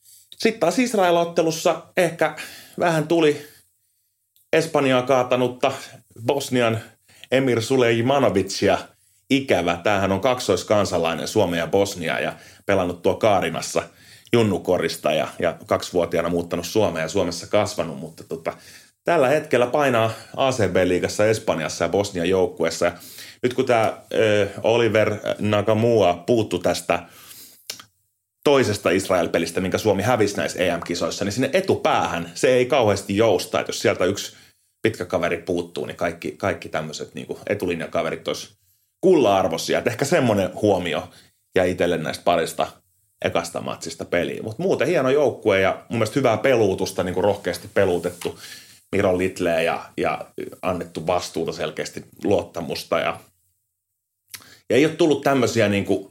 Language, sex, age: Finnish, male, 30-49